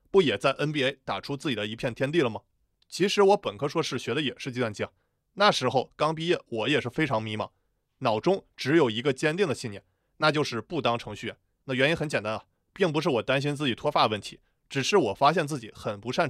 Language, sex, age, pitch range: Chinese, male, 20-39, 120-155 Hz